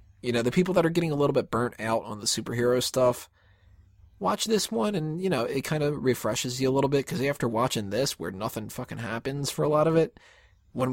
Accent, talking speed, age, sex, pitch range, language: American, 240 wpm, 20-39, male, 105-145 Hz, English